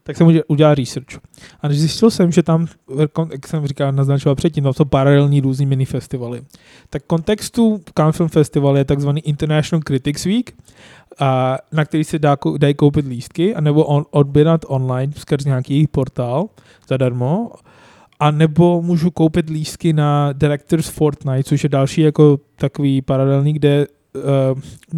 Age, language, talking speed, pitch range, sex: 20-39, Czech, 145 wpm, 140-165 Hz, male